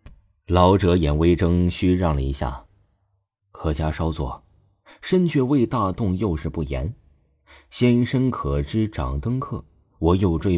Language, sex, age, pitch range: Chinese, male, 30-49, 80-115 Hz